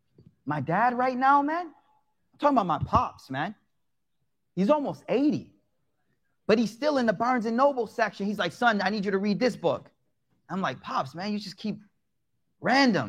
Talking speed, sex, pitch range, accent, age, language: 190 wpm, male, 190-255 Hz, American, 30-49, English